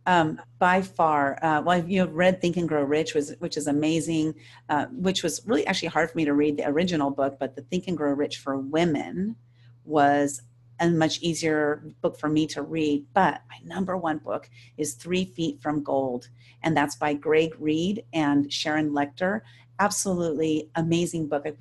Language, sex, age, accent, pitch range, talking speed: English, female, 40-59, American, 145-180 Hz, 190 wpm